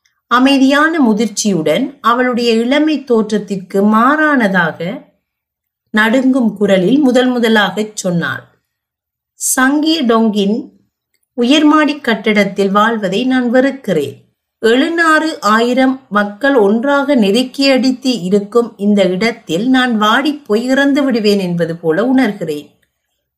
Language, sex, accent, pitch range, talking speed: Tamil, female, native, 200-260 Hz, 80 wpm